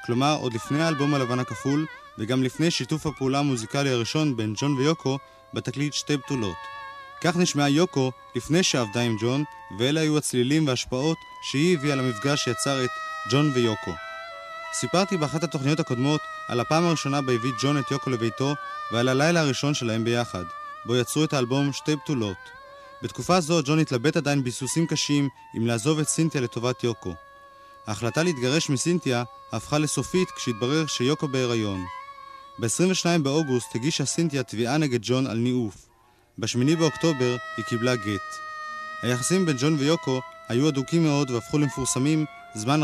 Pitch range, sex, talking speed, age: 125-165 Hz, male, 145 wpm, 30-49